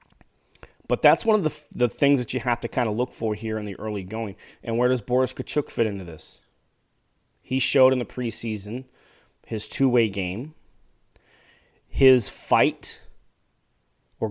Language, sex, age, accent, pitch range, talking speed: English, male, 30-49, American, 105-125 Hz, 165 wpm